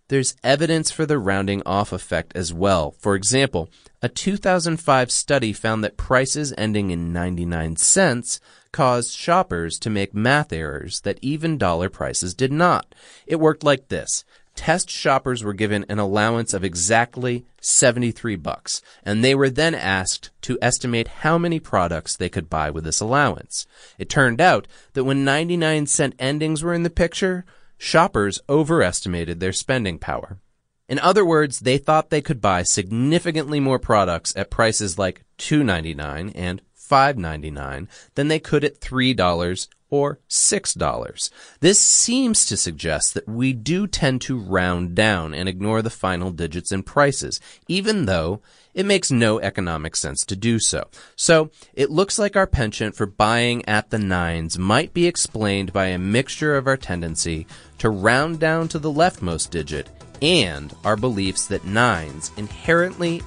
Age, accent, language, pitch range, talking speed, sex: 30-49, American, English, 95-145 Hz, 155 wpm, male